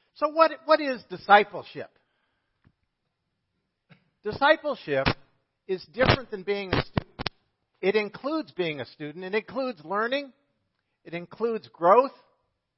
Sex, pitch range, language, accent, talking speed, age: male, 160-210 Hz, English, American, 110 wpm, 50-69